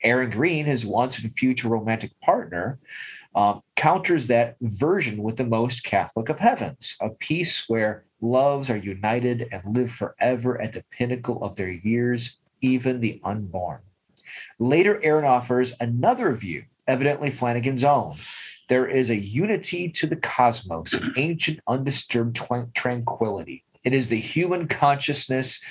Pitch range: 115-145 Hz